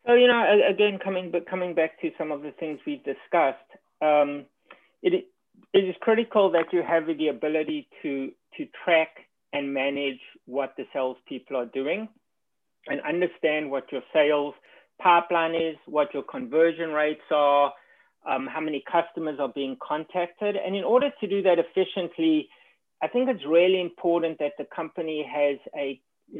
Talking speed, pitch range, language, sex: 165 wpm, 145-200 Hz, English, male